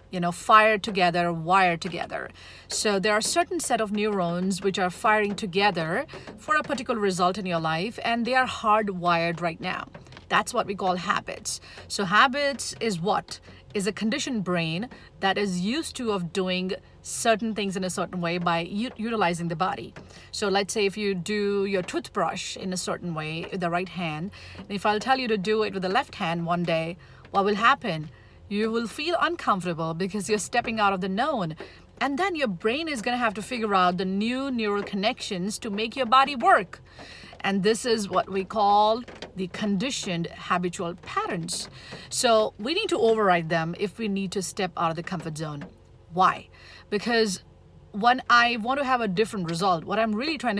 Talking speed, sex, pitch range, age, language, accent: 195 wpm, female, 180-220 Hz, 50-69, English, Indian